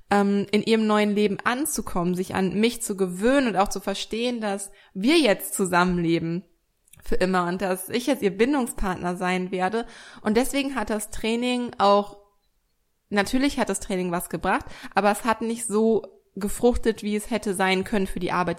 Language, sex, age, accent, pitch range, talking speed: German, female, 20-39, German, 195-235 Hz, 175 wpm